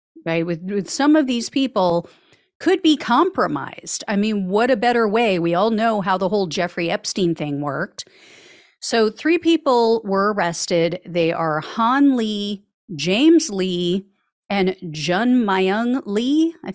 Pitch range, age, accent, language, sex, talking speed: 180-235 Hz, 40-59, American, English, female, 150 wpm